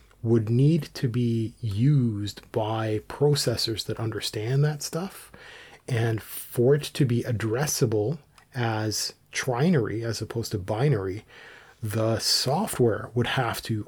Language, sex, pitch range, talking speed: English, male, 110-135 Hz, 120 wpm